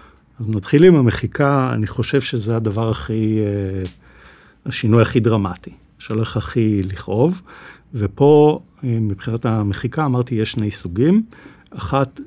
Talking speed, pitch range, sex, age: 110 wpm, 110-140 Hz, male, 50-69